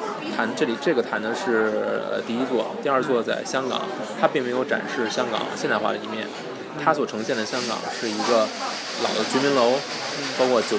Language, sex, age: Chinese, male, 20-39